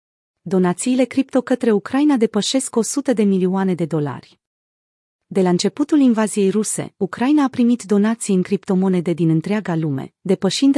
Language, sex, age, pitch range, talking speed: Romanian, female, 30-49, 170-225 Hz, 140 wpm